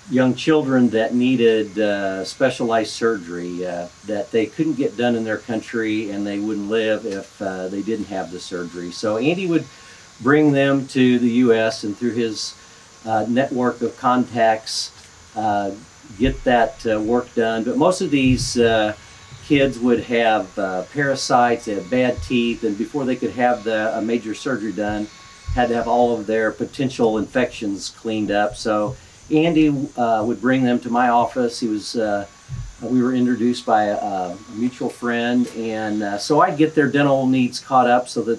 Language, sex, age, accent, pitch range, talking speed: English, male, 50-69, American, 105-125 Hz, 175 wpm